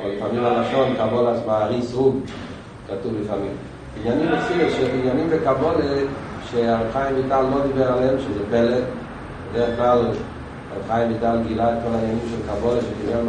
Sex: male